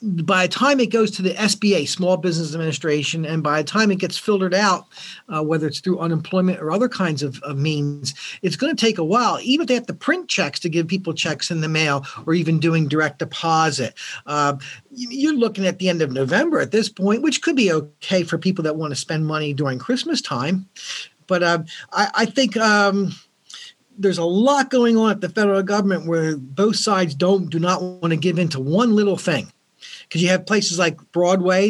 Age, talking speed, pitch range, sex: 50-69, 220 wpm, 160-205 Hz, male